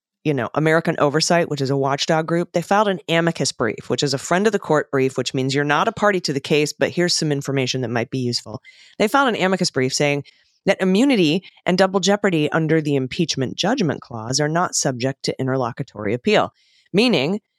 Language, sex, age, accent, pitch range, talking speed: English, female, 30-49, American, 135-175 Hz, 210 wpm